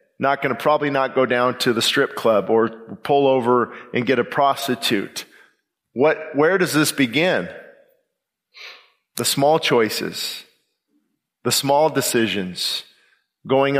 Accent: American